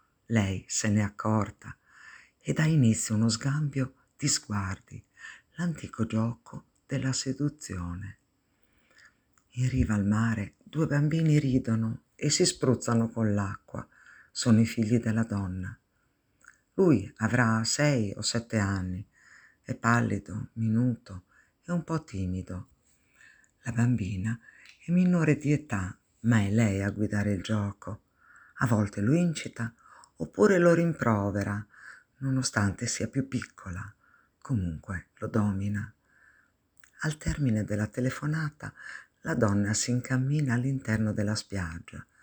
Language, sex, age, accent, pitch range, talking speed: Italian, female, 50-69, native, 105-135 Hz, 120 wpm